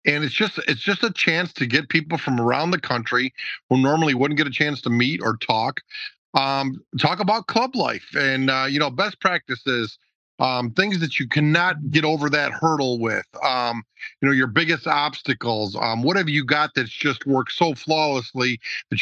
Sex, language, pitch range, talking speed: male, English, 125-155 Hz, 195 wpm